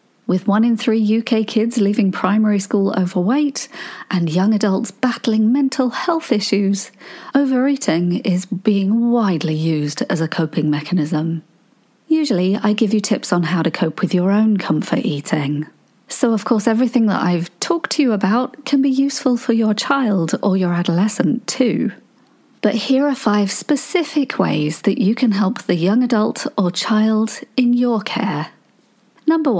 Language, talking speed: English, 160 wpm